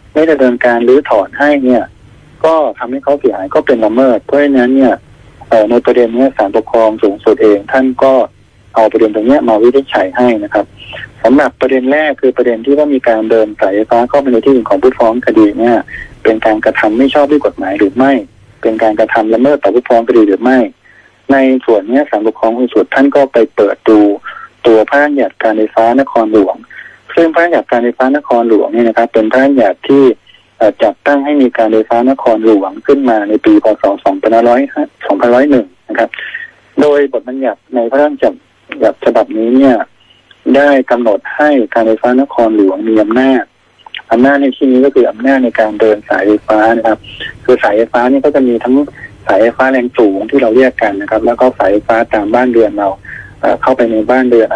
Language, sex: Thai, male